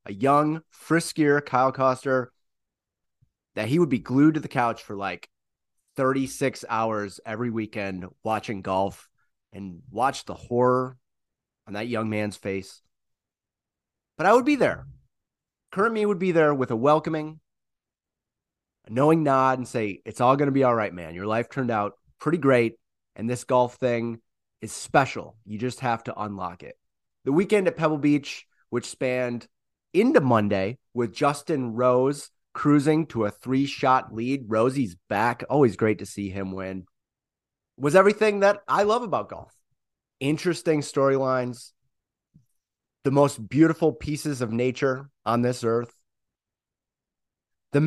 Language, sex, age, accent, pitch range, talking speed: English, male, 30-49, American, 110-145 Hz, 150 wpm